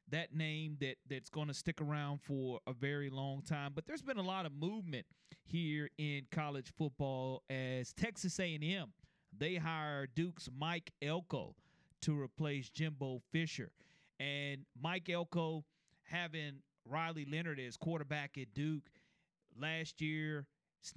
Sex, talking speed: male, 140 wpm